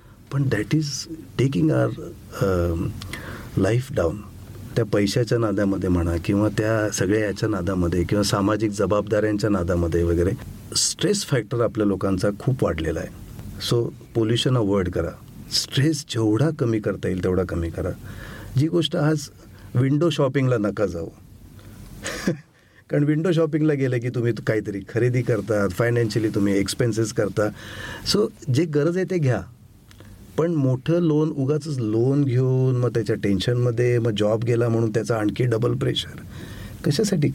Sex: male